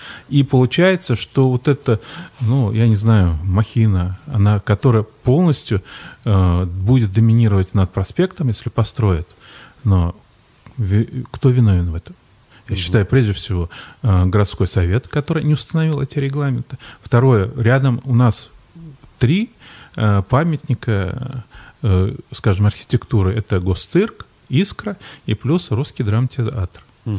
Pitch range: 100-130 Hz